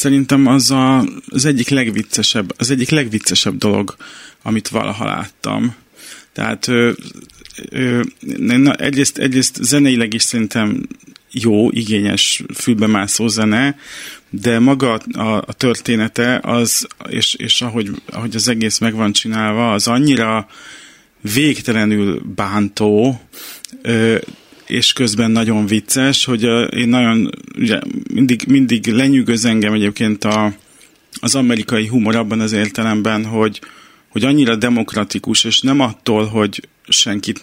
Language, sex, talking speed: Hungarian, male, 120 wpm